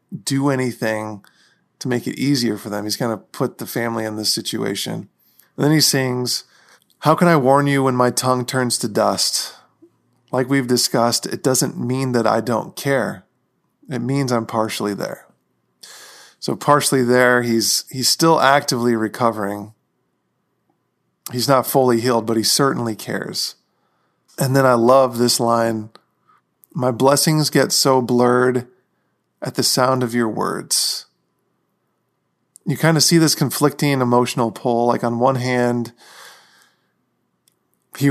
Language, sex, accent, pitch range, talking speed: English, male, American, 115-135 Hz, 150 wpm